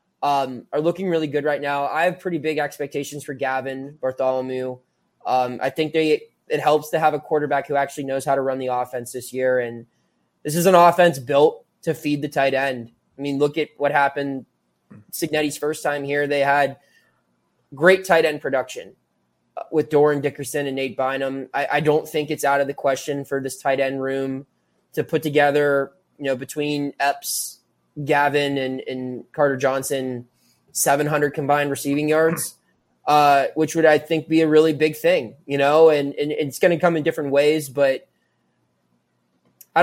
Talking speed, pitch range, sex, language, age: 180 wpm, 135-160 Hz, male, English, 20-39